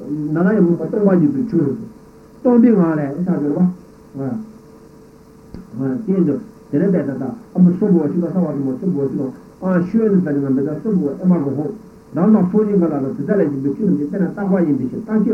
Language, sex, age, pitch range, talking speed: Italian, male, 60-79, 155-220 Hz, 50 wpm